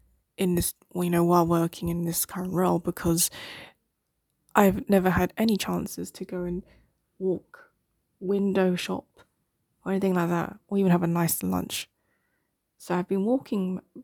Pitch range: 170-195 Hz